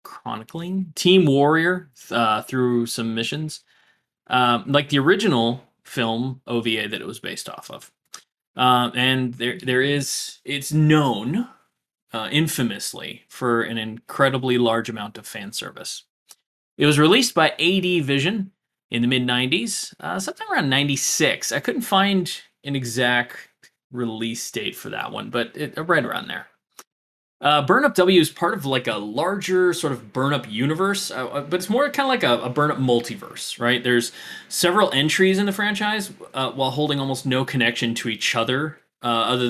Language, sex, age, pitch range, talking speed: English, male, 20-39, 120-155 Hz, 165 wpm